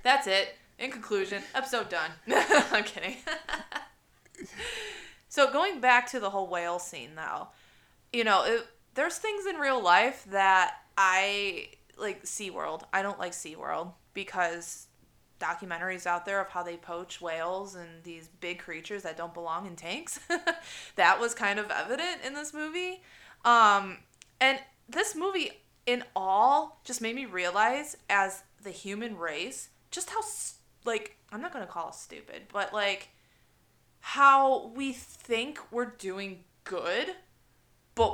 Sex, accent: female, American